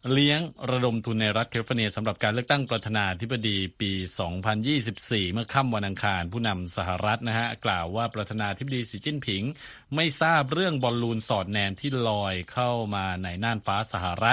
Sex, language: male, Thai